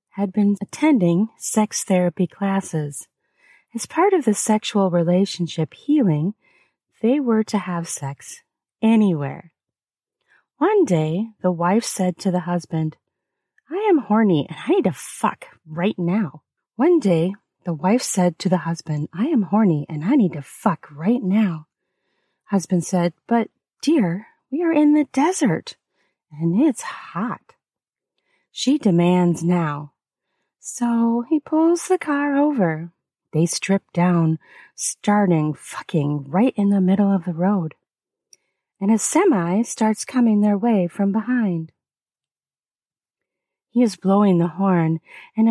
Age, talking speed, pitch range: 30-49, 135 wpm, 175-240 Hz